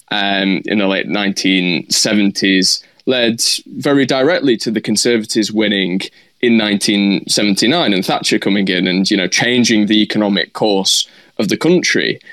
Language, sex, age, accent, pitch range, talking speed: English, male, 20-39, British, 100-125 Hz, 135 wpm